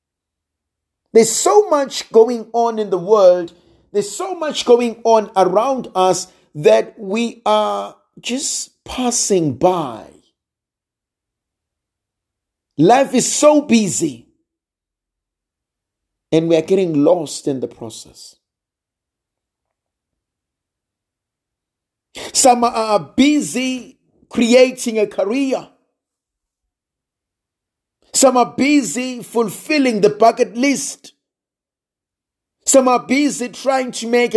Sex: male